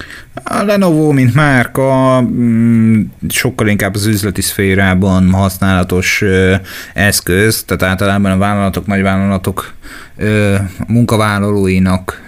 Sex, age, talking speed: male, 30-49, 85 wpm